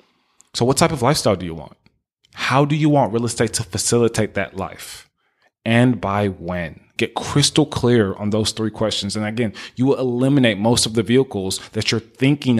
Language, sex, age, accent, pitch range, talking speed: English, male, 20-39, American, 110-140 Hz, 190 wpm